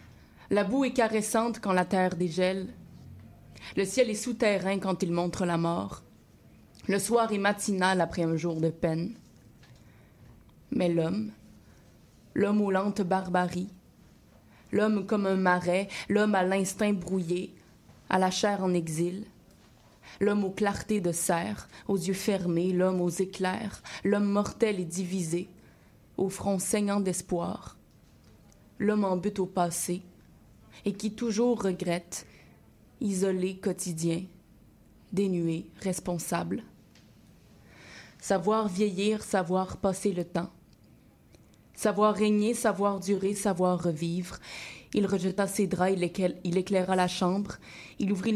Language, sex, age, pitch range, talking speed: French, female, 20-39, 180-205 Hz, 125 wpm